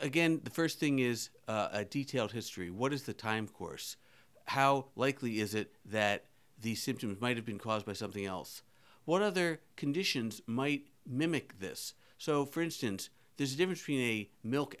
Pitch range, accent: 105-130 Hz, American